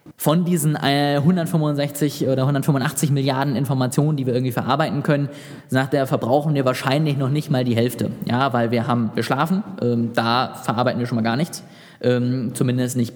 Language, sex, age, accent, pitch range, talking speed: German, male, 20-39, German, 120-150 Hz, 180 wpm